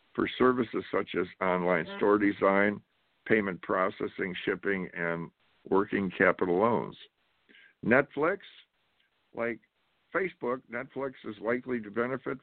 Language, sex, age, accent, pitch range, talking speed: English, male, 60-79, American, 95-120 Hz, 105 wpm